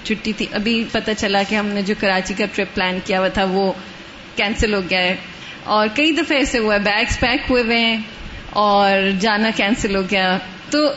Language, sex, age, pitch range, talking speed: Urdu, female, 20-39, 215-270 Hz, 210 wpm